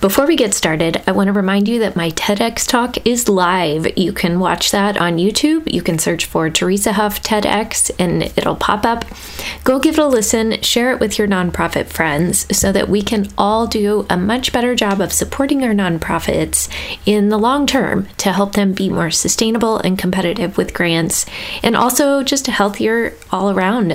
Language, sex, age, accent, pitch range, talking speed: English, female, 20-39, American, 180-230 Hz, 195 wpm